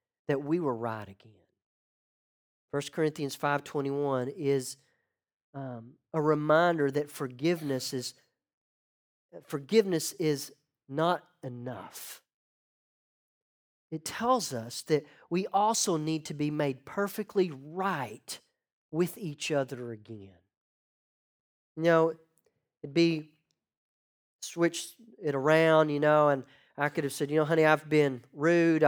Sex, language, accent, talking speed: male, English, American, 120 wpm